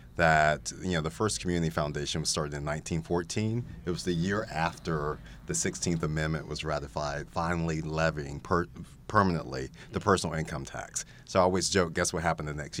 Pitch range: 75-95 Hz